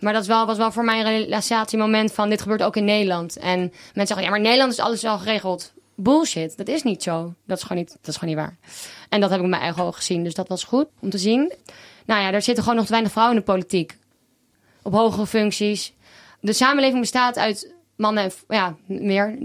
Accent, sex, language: Dutch, female, Dutch